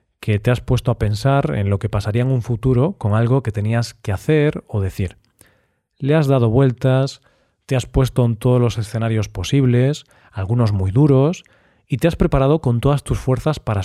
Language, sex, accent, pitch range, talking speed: Spanish, male, Spanish, 105-135 Hz, 195 wpm